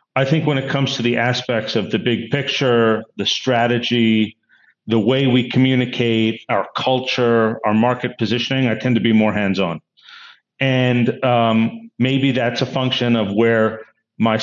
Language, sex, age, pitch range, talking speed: English, male, 40-59, 110-125 Hz, 160 wpm